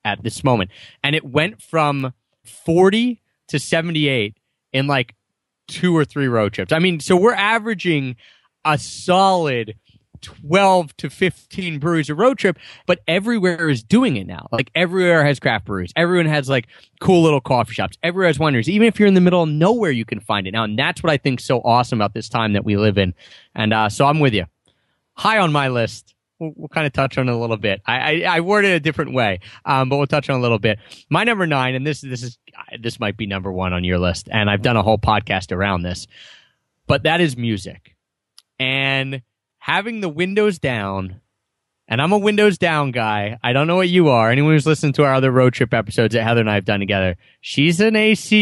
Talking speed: 225 wpm